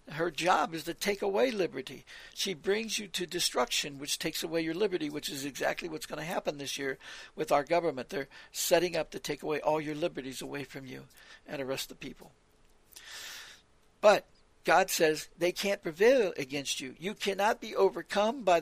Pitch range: 165-220 Hz